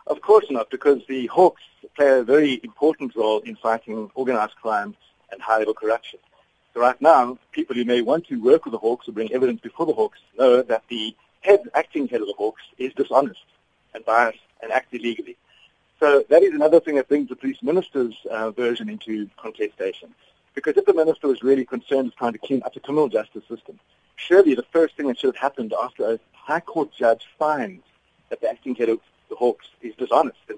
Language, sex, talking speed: English, male, 210 wpm